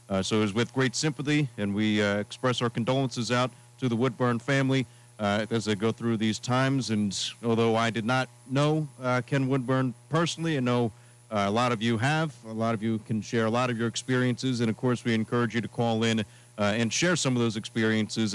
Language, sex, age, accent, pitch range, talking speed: English, male, 40-59, American, 110-130 Hz, 230 wpm